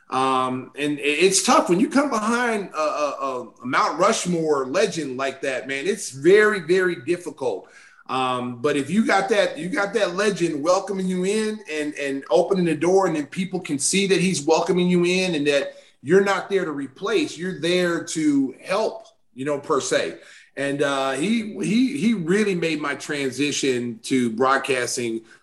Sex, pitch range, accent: male, 140-190 Hz, American